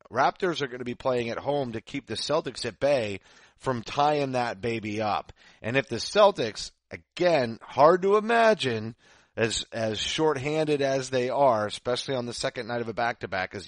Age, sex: 30-49, male